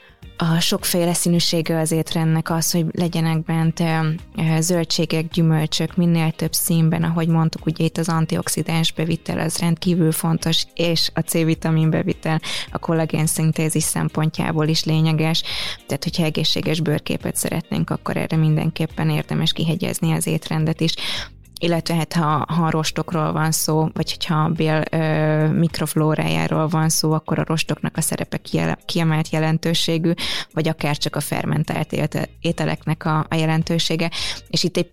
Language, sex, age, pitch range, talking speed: Hungarian, female, 20-39, 155-165 Hz, 140 wpm